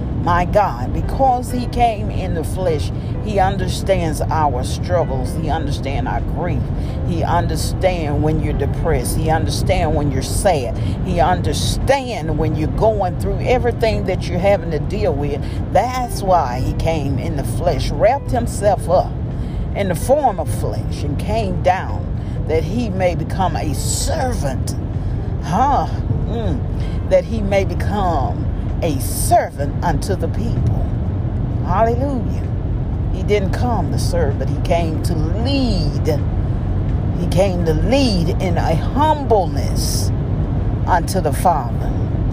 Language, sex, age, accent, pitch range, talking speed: English, female, 40-59, American, 95-115 Hz, 135 wpm